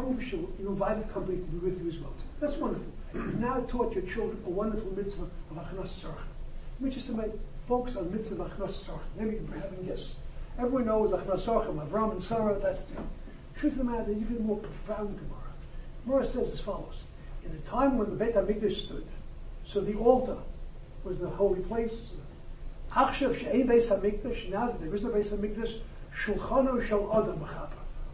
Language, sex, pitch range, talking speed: English, male, 195-250 Hz, 180 wpm